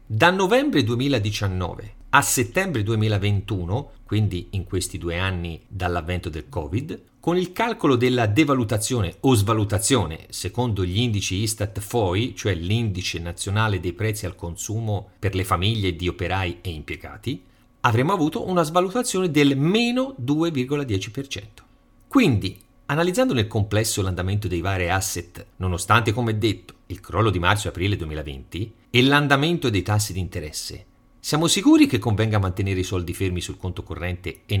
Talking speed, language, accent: 140 wpm, Italian, native